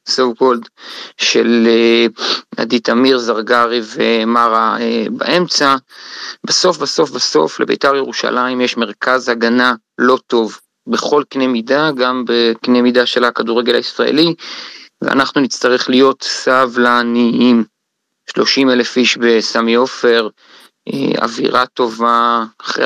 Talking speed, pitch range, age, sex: 110 wpm, 115-125 Hz, 30-49, male